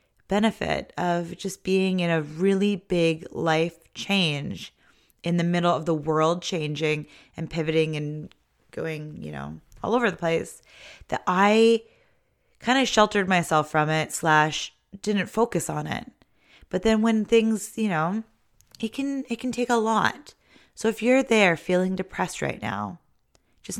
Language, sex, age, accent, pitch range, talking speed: English, female, 20-39, American, 160-205 Hz, 155 wpm